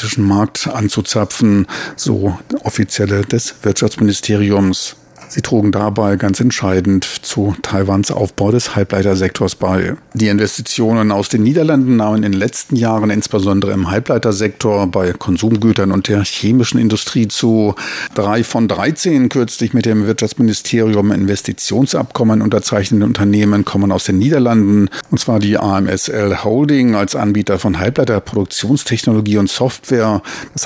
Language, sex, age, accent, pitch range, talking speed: German, male, 50-69, German, 100-115 Hz, 125 wpm